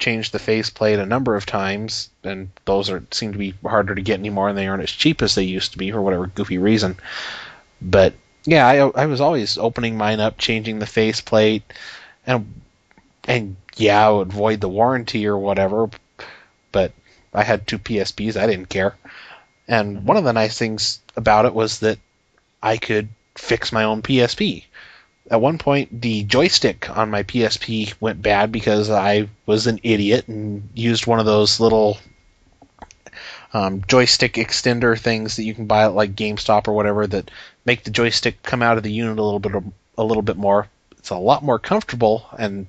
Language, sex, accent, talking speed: English, male, American, 185 wpm